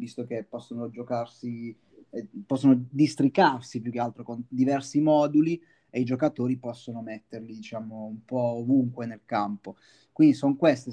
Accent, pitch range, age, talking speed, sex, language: native, 120-135 Hz, 20-39, 145 wpm, male, Italian